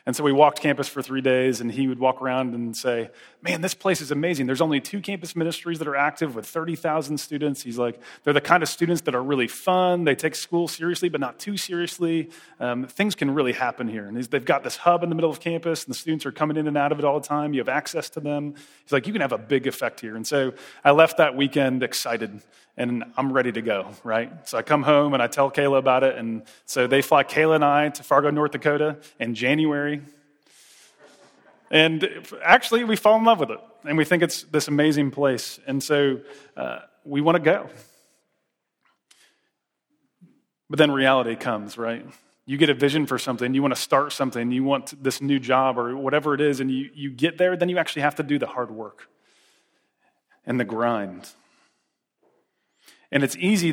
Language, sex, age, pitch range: English, male, 30-49, 130-155 Hz